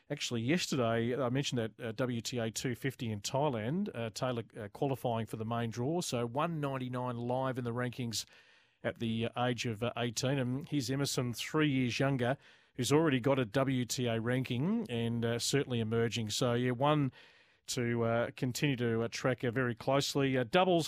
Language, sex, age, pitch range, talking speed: English, male, 40-59, 120-150 Hz, 170 wpm